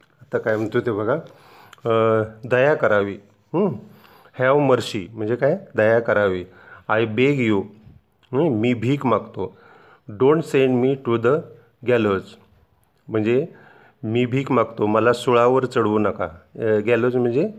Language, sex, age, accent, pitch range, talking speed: Marathi, male, 40-59, native, 110-130 Hz, 120 wpm